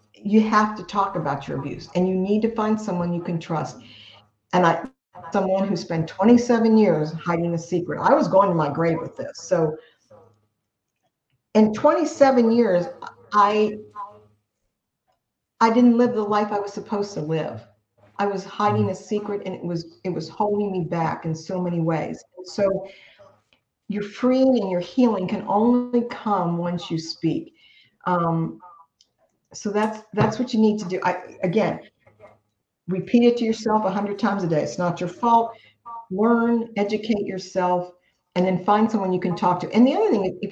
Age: 50-69